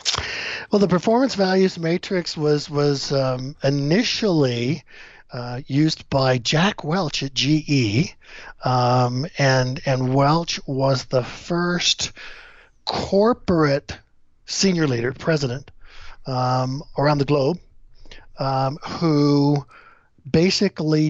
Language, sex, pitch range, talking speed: English, male, 125-150 Hz, 95 wpm